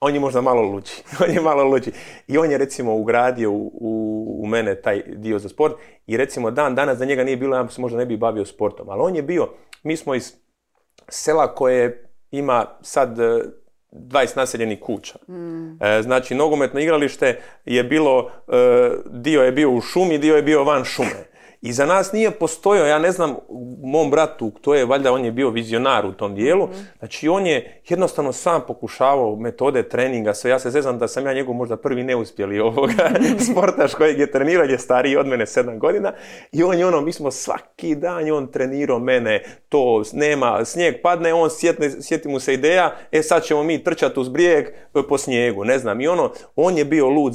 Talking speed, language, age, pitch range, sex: 195 wpm, Croatian, 40-59, 120-160 Hz, male